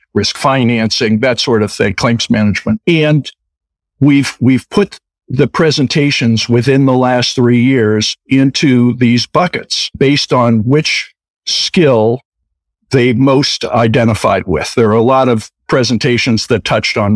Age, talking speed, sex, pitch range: 50-69, 135 wpm, male, 110-135 Hz